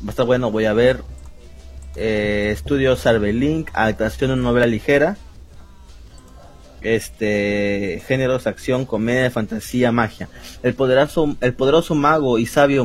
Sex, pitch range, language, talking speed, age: male, 105-135 Hz, Spanish, 130 wpm, 30-49